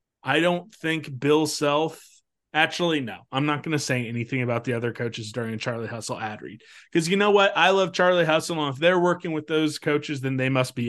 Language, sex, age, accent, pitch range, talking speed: English, male, 30-49, American, 135-175 Hz, 230 wpm